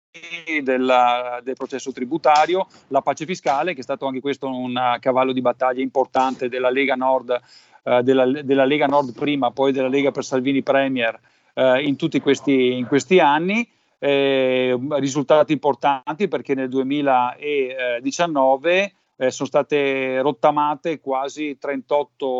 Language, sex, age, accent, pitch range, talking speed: Italian, male, 40-59, native, 130-160 Hz, 125 wpm